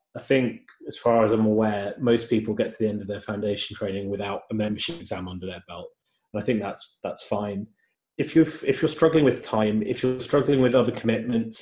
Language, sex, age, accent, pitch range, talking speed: English, male, 20-39, British, 105-125 Hz, 220 wpm